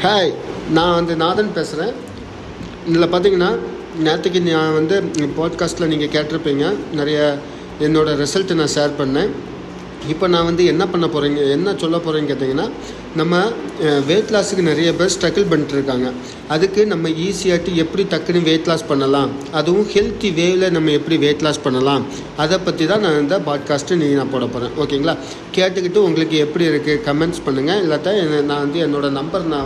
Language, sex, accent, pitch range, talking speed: Tamil, male, native, 145-175 Hz, 150 wpm